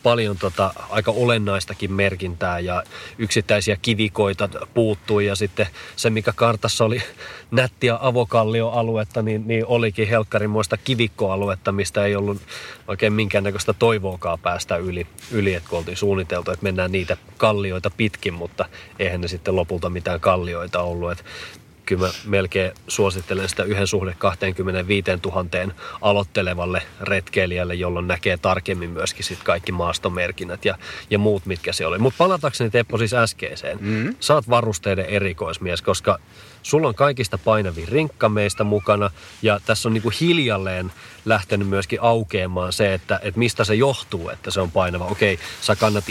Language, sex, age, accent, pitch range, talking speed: Finnish, male, 30-49, native, 95-110 Hz, 145 wpm